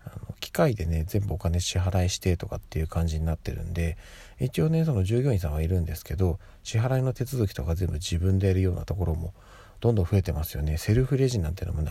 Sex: male